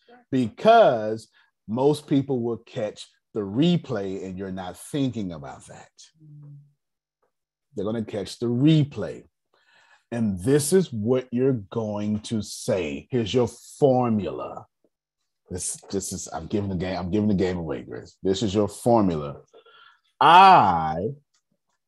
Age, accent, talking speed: 30-49, American, 130 wpm